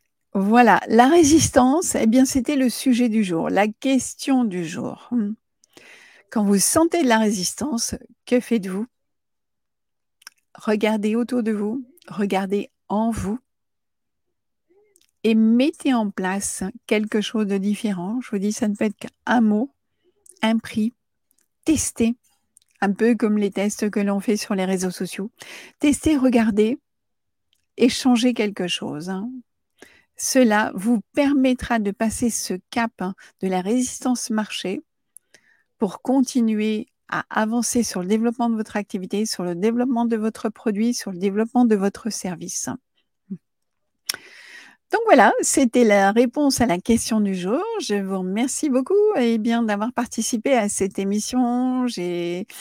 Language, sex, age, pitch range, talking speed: French, female, 50-69, 205-250 Hz, 140 wpm